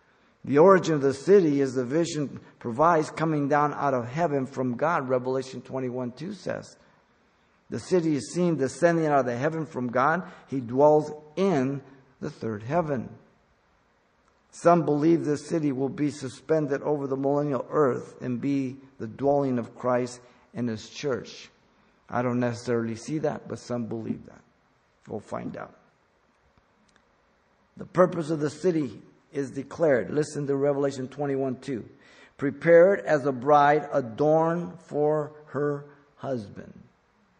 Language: English